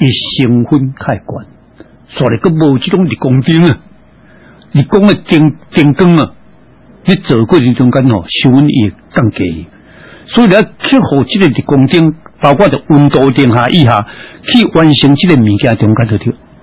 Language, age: Chinese, 60-79